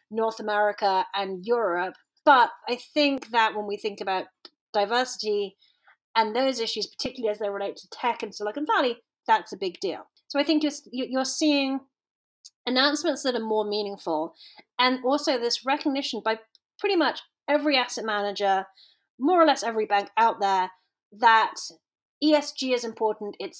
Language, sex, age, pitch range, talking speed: English, female, 30-49, 210-275 Hz, 160 wpm